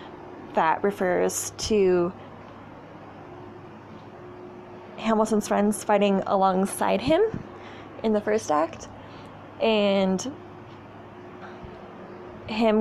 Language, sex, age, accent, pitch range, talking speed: English, female, 20-39, American, 185-215 Hz, 65 wpm